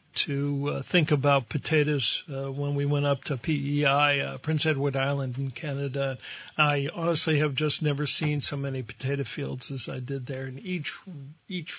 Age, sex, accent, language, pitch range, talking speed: 60-79, male, American, English, 135-155 Hz, 180 wpm